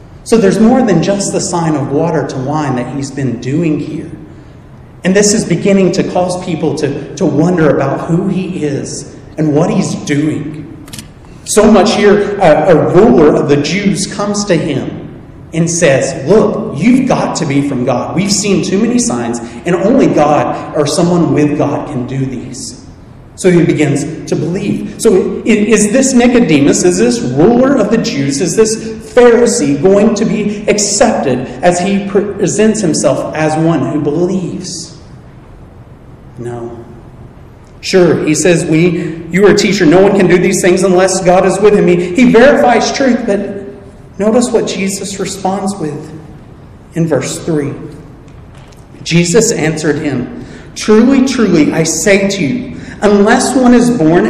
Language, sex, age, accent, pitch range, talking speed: English, male, 30-49, American, 150-200 Hz, 160 wpm